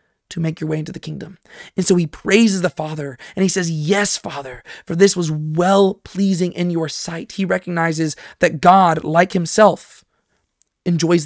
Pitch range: 165-200 Hz